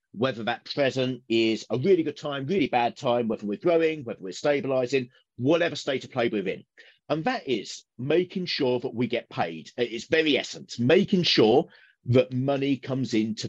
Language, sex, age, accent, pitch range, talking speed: English, male, 40-59, British, 115-150 Hz, 180 wpm